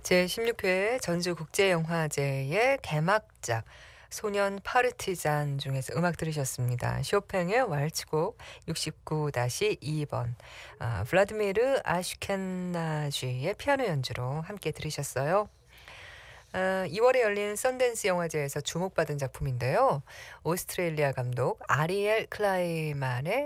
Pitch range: 130-190 Hz